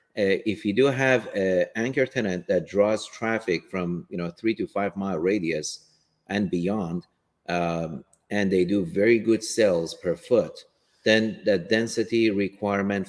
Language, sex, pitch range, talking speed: English, male, 90-110 Hz, 160 wpm